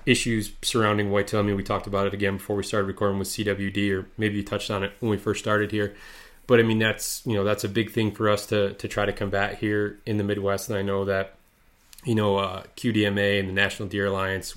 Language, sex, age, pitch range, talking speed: English, male, 20-39, 100-105 Hz, 255 wpm